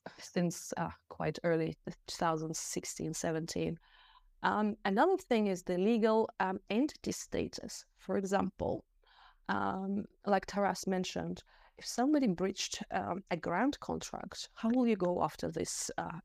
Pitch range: 175-220 Hz